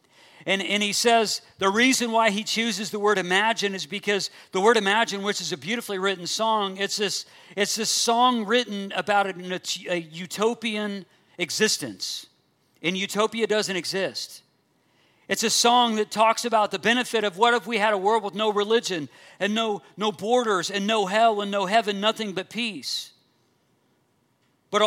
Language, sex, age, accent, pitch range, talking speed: English, male, 50-69, American, 180-220 Hz, 170 wpm